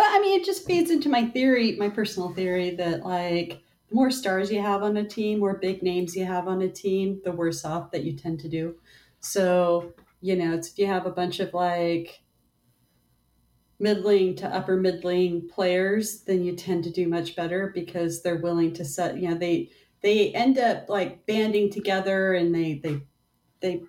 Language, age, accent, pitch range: English, 40-59, American, 175-215 Hz